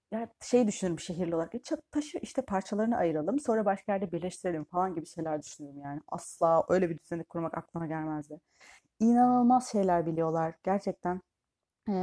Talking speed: 150 wpm